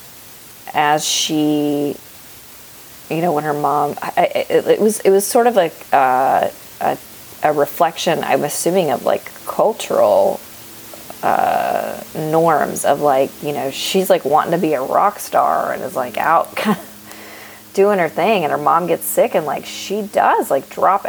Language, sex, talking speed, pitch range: English, female, 170 wpm, 130-170 Hz